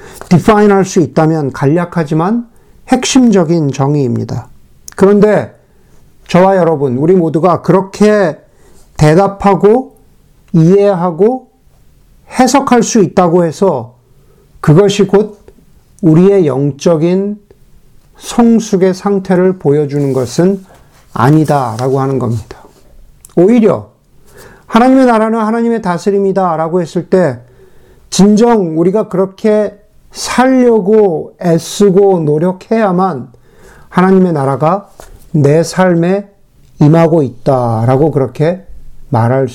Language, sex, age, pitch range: Korean, male, 50-69, 140-200 Hz